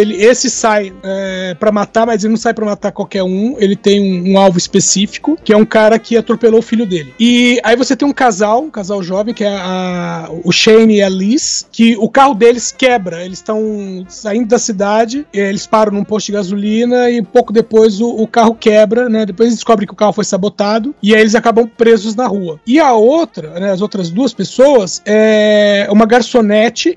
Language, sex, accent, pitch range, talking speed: Portuguese, male, Brazilian, 200-255 Hz, 205 wpm